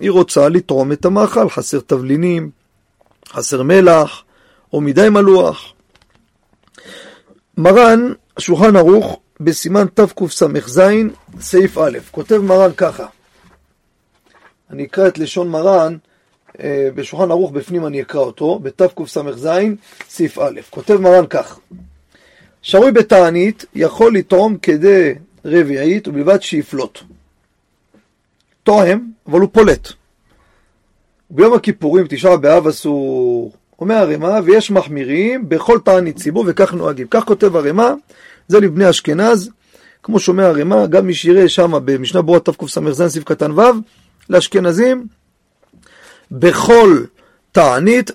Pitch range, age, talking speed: 150-205 Hz, 40-59, 105 wpm